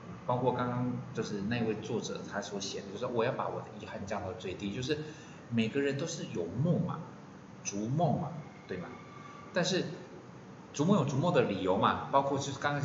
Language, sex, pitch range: Chinese, male, 110-150 Hz